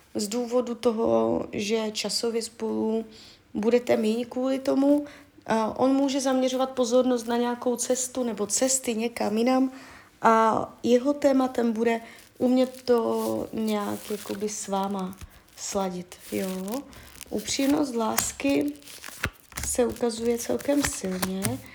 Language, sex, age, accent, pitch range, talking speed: Czech, female, 30-49, native, 195-255 Hz, 110 wpm